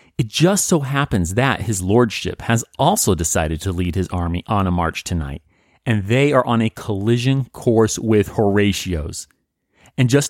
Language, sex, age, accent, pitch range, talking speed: English, male, 30-49, American, 95-135 Hz, 170 wpm